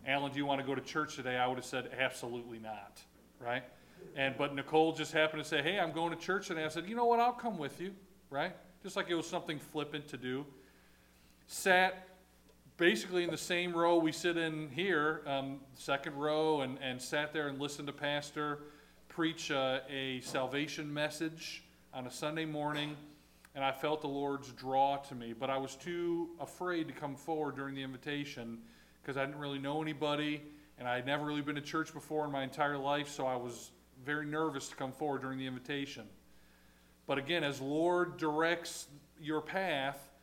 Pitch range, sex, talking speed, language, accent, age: 135-160 Hz, male, 200 wpm, English, American, 40-59